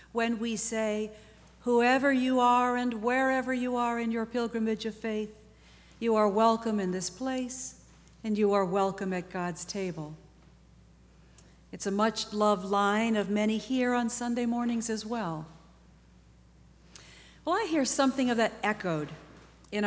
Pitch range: 190-250 Hz